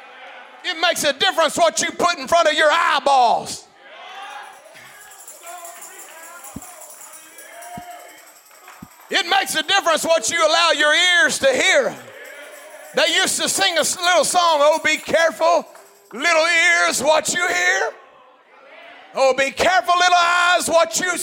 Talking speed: 125 wpm